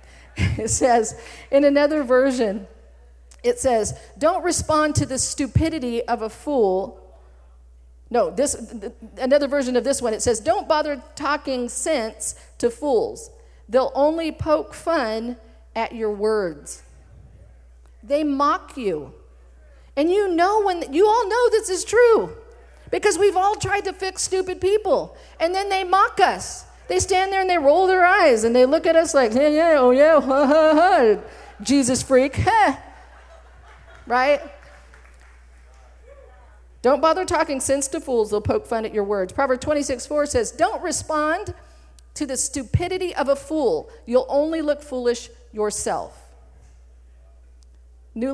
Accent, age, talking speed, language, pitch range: American, 40-59, 145 wpm, English, 215-320 Hz